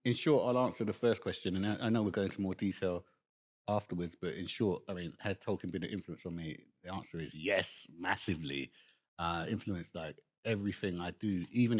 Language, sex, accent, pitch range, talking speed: English, male, British, 95-120 Hz, 205 wpm